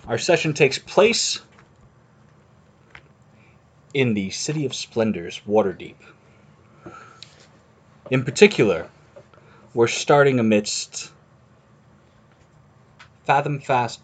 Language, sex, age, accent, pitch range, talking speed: English, male, 30-49, American, 115-150 Hz, 70 wpm